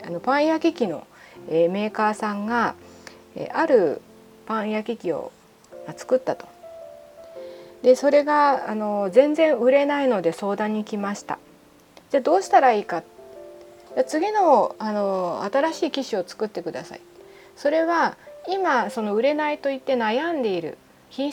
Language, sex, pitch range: Japanese, female, 200-295 Hz